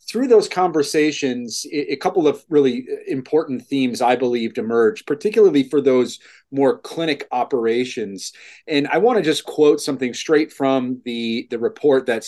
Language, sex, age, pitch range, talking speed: English, male, 30-49, 125-165 Hz, 150 wpm